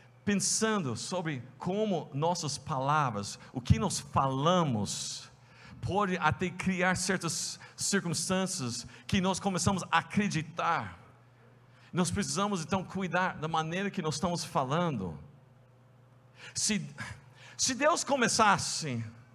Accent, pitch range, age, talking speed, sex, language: Brazilian, 125-205 Hz, 50-69, 100 wpm, male, Portuguese